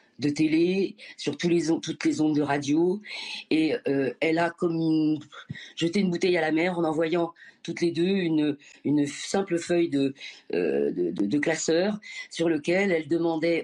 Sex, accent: female, French